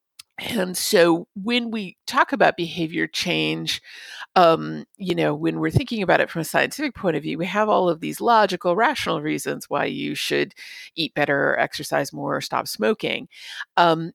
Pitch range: 140-200 Hz